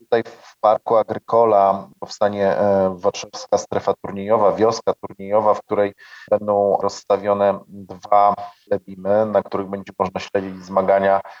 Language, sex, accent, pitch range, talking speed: Polish, male, native, 95-105 Hz, 115 wpm